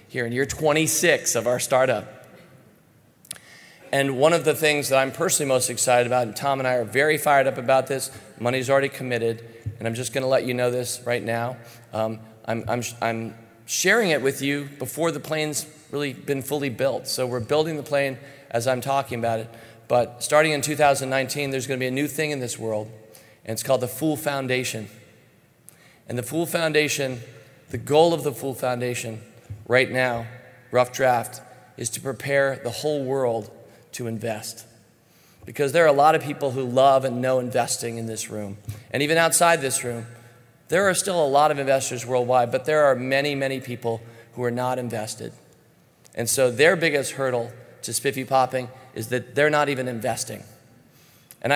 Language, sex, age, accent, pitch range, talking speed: English, male, 40-59, American, 120-145 Hz, 185 wpm